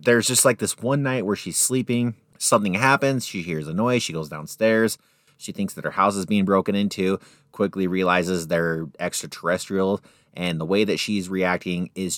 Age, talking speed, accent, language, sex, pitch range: 30-49, 185 wpm, American, English, male, 90-120 Hz